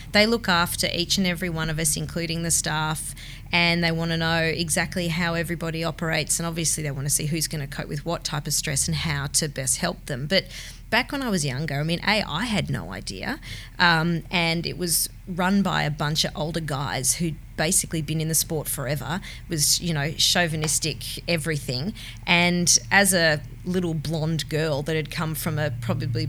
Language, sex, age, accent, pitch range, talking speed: English, female, 20-39, Australian, 150-175 Hz, 205 wpm